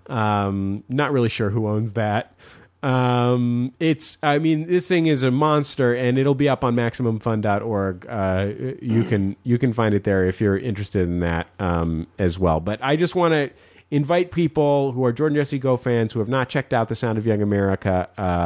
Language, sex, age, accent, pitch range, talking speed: English, male, 30-49, American, 100-140 Hz, 200 wpm